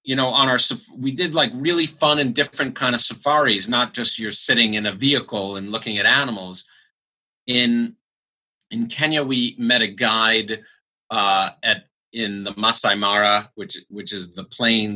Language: English